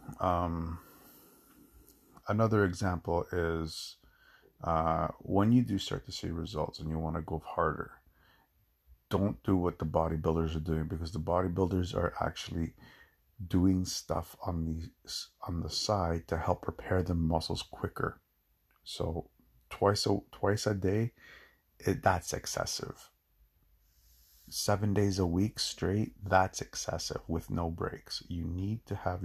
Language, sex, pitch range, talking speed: English, male, 80-100 Hz, 135 wpm